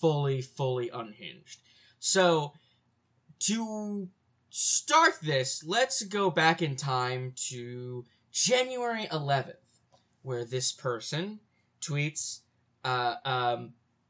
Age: 20-39